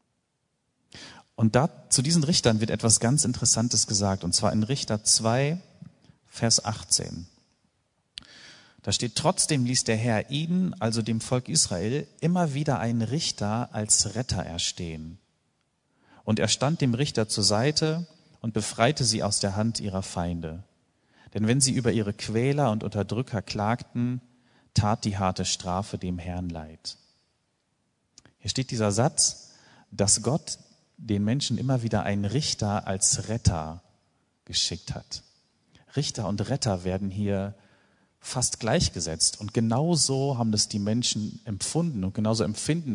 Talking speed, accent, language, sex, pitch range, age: 140 wpm, German, German, male, 100-130 Hz, 40-59